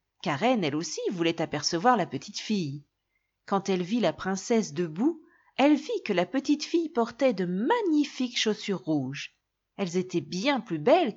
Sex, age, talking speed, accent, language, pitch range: female, 40-59, 160 wpm, French, French, 165-270 Hz